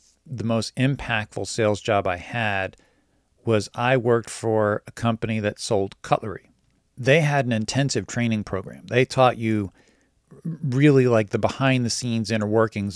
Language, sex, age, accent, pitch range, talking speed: English, male, 40-59, American, 105-130 Hz, 155 wpm